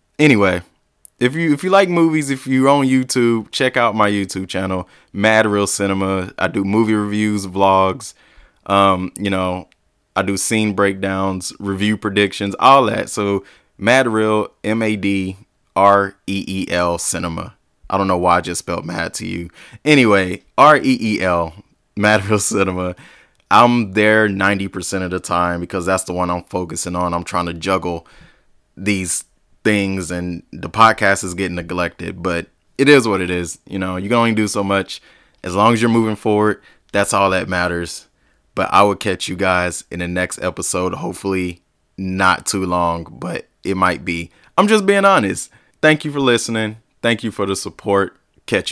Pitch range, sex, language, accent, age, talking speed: 90-110 Hz, male, English, American, 20-39, 170 wpm